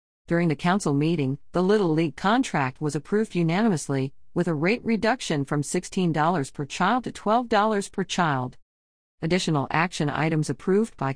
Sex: female